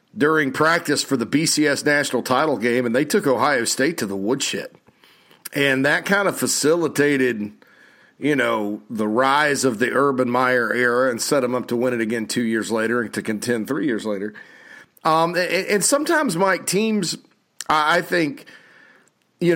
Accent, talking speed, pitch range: American, 170 wpm, 115-145 Hz